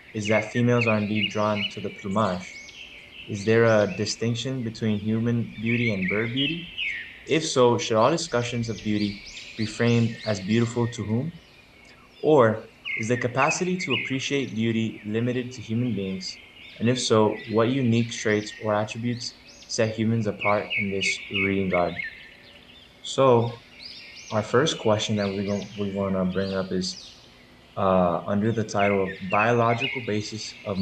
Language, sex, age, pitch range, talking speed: English, male, 20-39, 100-120 Hz, 150 wpm